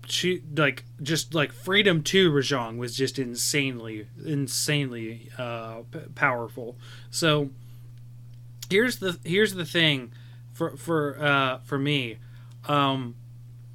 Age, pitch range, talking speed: 20-39, 120-155 Hz, 115 wpm